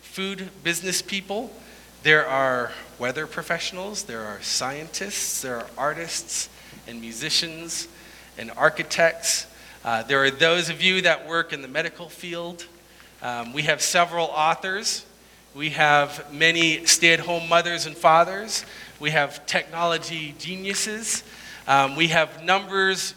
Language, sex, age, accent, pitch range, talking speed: English, male, 40-59, American, 155-210 Hz, 125 wpm